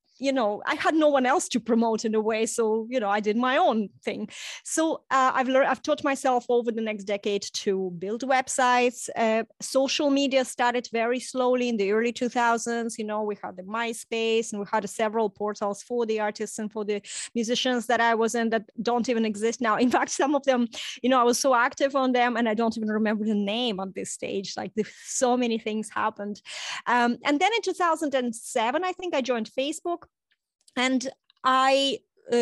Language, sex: English, female